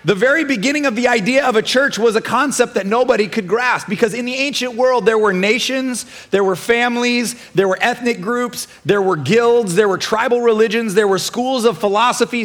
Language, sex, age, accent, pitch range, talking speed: English, male, 30-49, American, 190-240 Hz, 205 wpm